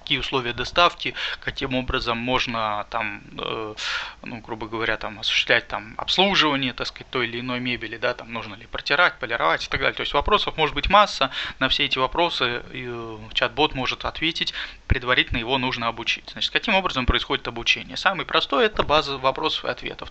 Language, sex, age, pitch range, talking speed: Russian, male, 20-39, 120-150 Hz, 180 wpm